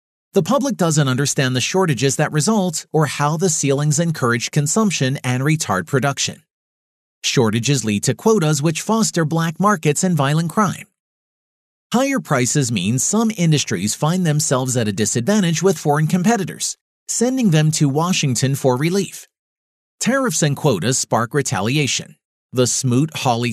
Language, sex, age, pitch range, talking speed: English, male, 40-59, 130-180 Hz, 140 wpm